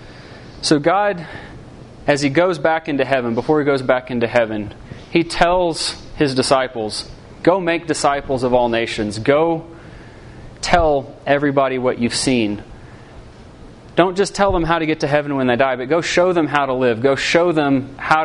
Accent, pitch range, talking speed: American, 115-145 Hz, 175 wpm